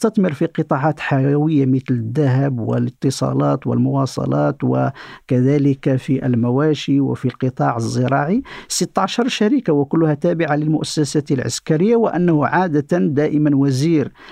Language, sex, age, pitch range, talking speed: Arabic, male, 50-69, 140-195 Hz, 100 wpm